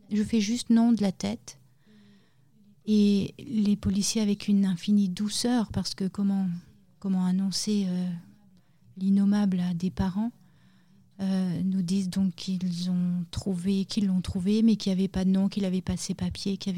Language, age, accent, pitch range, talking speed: French, 40-59, French, 175-200 Hz, 170 wpm